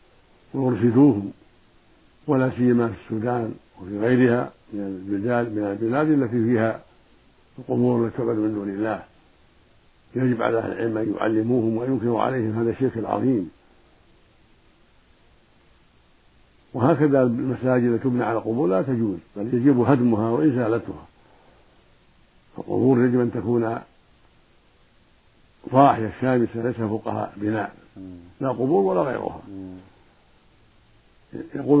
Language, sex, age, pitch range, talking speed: Arabic, male, 60-79, 110-130 Hz, 100 wpm